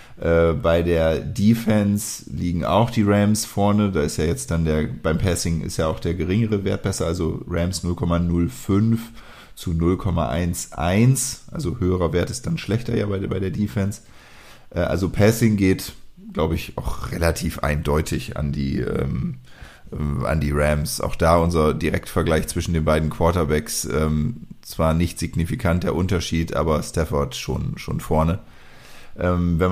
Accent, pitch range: German, 85-105 Hz